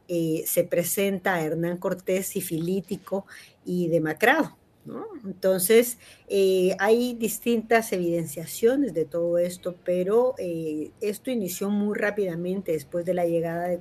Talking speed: 120 wpm